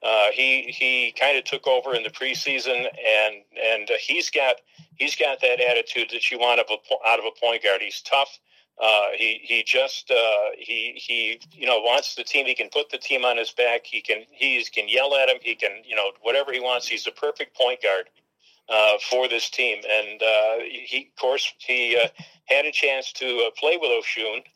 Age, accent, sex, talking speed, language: 40-59, American, male, 215 wpm, English